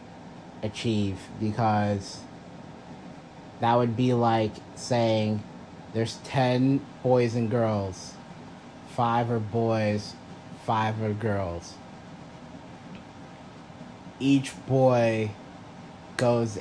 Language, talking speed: English, 75 wpm